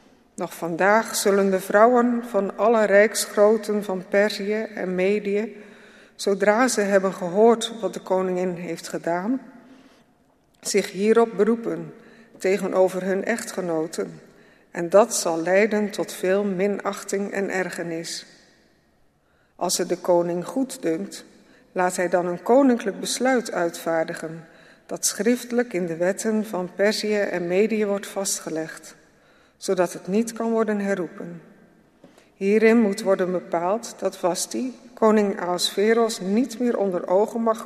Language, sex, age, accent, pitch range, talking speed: Dutch, female, 50-69, Dutch, 180-225 Hz, 125 wpm